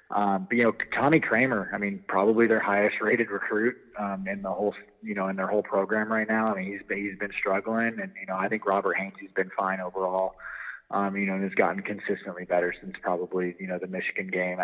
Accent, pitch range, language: American, 95-110 Hz, English